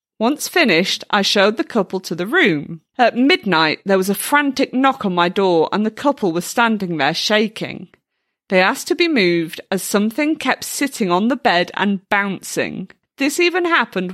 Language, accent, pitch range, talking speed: English, British, 180-245 Hz, 185 wpm